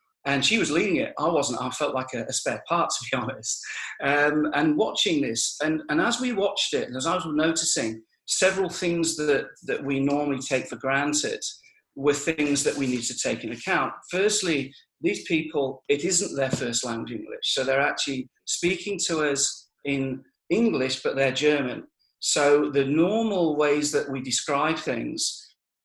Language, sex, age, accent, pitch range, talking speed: English, male, 40-59, British, 135-165 Hz, 180 wpm